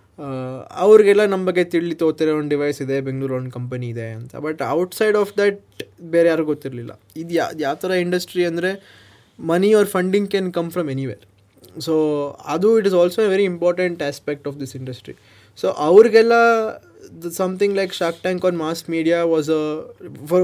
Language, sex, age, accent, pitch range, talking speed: Kannada, male, 20-39, native, 135-180 Hz, 170 wpm